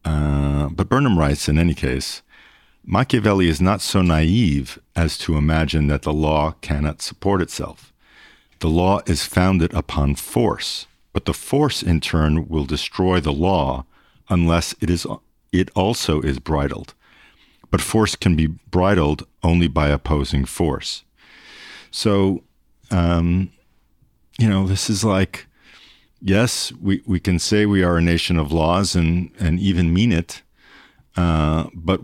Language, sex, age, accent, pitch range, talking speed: English, male, 50-69, American, 75-95 Hz, 145 wpm